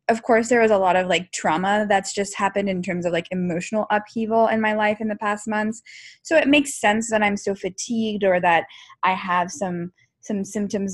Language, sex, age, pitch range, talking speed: English, female, 10-29, 185-225 Hz, 220 wpm